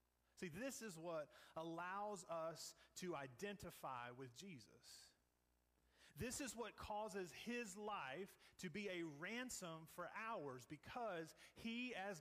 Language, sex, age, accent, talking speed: English, male, 30-49, American, 125 wpm